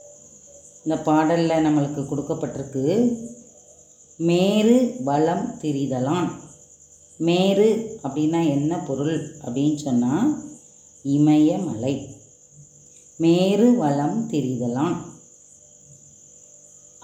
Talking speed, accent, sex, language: 60 wpm, native, female, Tamil